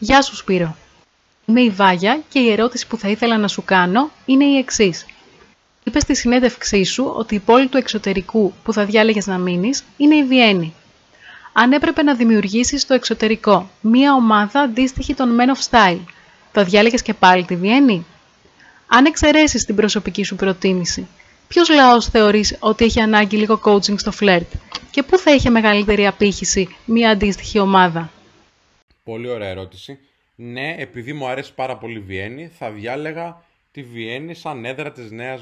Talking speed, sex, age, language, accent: 165 wpm, female, 30-49, Greek, native